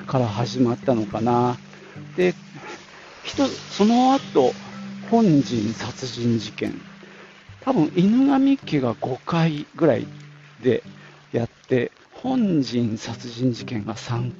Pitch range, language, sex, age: 120-195 Hz, Japanese, male, 50-69